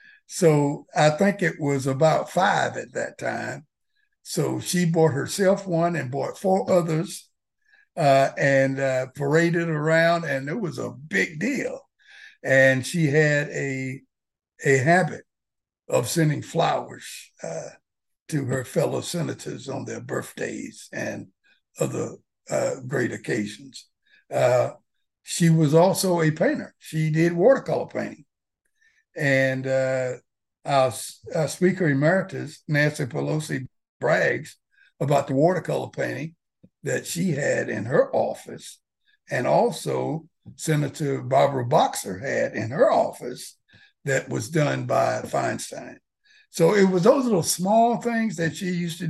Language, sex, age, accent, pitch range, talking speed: English, male, 60-79, American, 140-180 Hz, 130 wpm